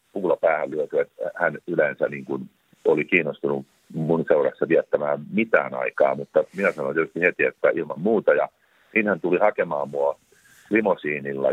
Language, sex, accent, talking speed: Finnish, male, native, 155 wpm